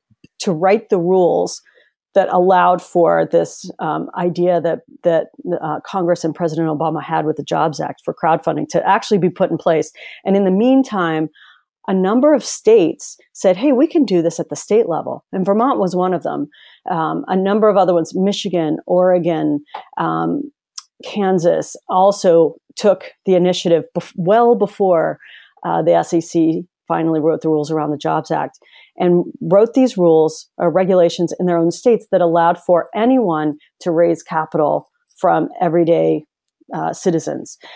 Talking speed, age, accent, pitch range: 160 wpm, 40-59, American, 170-220 Hz